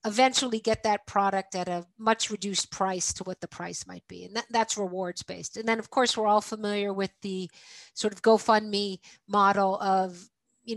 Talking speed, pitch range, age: 185 wpm, 195-235 Hz, 50-69